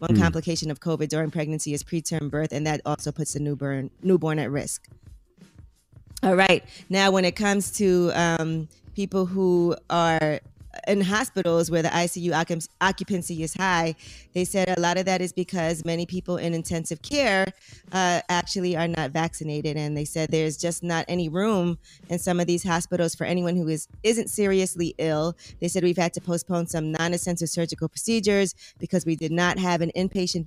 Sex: female